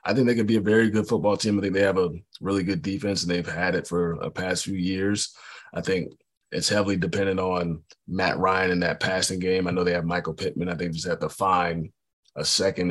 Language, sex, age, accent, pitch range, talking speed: English, male, 30-49, American, 85-100 Hz, 250 wpm